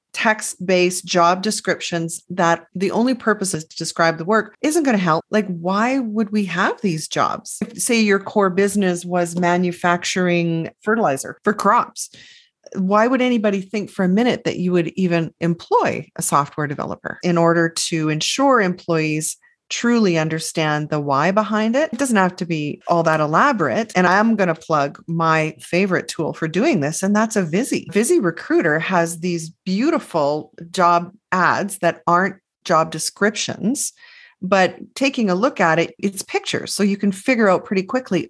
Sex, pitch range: female, 170-215 Hz